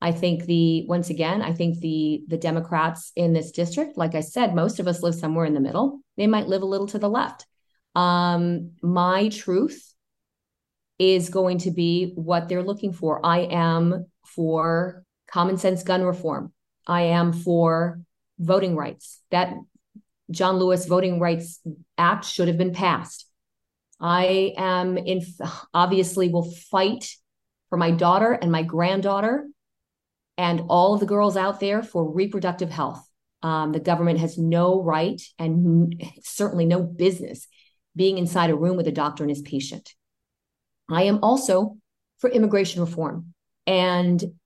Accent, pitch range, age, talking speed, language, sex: American, 165-190 Hz, 30-49, 155 wpm, English, female